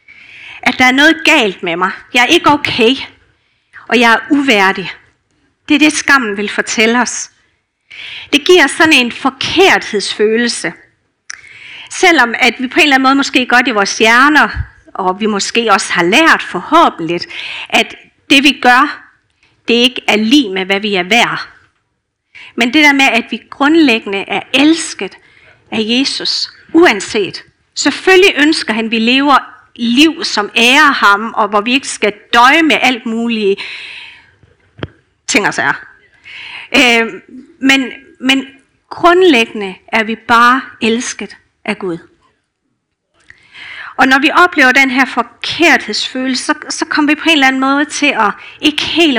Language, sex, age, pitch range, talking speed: Danish, female, 50-69, 225-305 Hz, 150 wpm